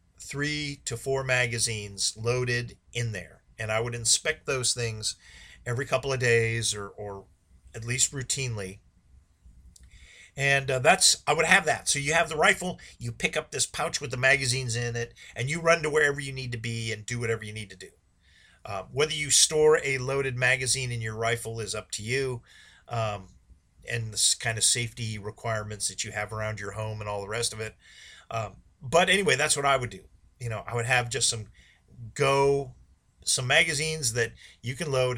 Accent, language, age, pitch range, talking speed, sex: American, English, 40-59, 110-135 Hz, 195 wpm, male